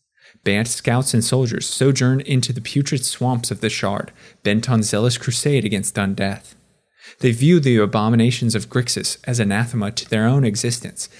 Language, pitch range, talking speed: English, 110-135 Hz, 165 wpm